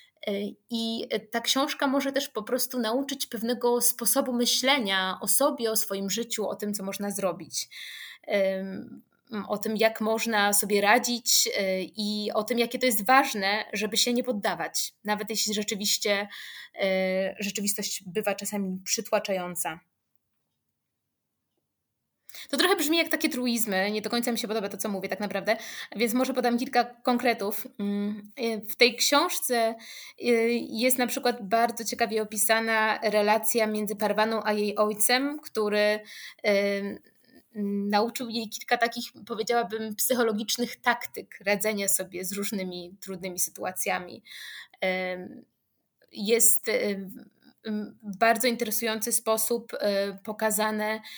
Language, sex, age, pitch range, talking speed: Polish, female, 20-39, 205-240 Hz, 120 wpm